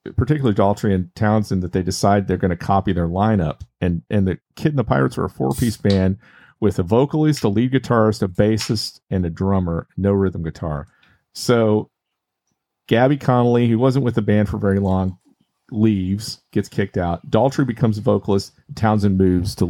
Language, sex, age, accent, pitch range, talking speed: English, male, 40-59, American, 90-115 Hz, 185 wpm